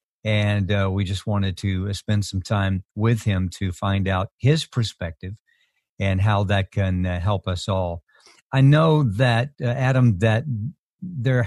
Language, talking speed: English, 165 wpm